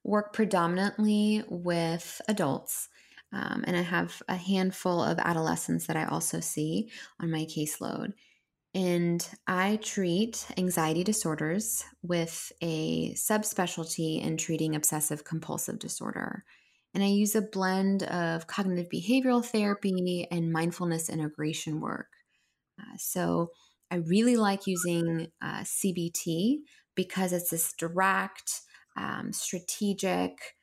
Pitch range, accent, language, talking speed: 165-200 Hz, American, English, 115 wpm